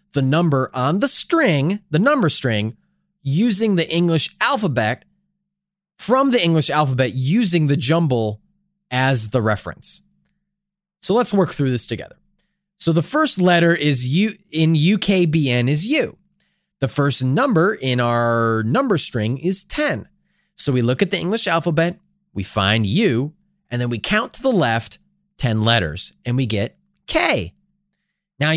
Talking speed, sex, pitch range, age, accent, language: 150 wpm, male, 130-195 Hz, 30-49, American, English